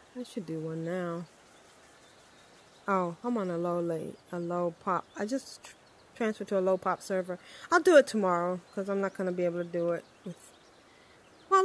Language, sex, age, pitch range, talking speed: English, female, 20-39, 195-255 Hz, 180 wpm